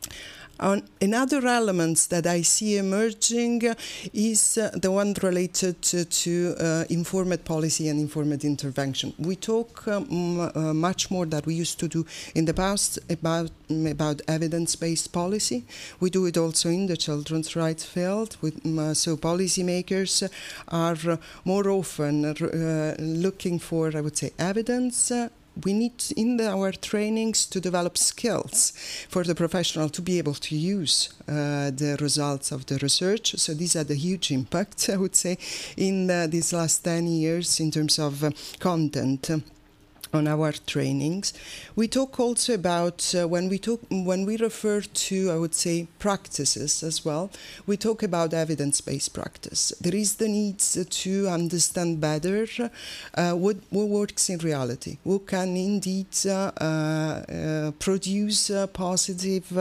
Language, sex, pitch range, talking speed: French, female, 155-190 Hz, 150 wpm